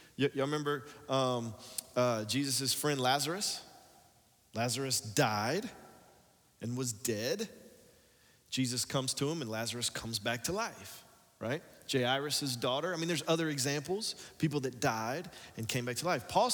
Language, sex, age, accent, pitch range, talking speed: English, male, 30-49, American, 130-165 Hz, 145 wpm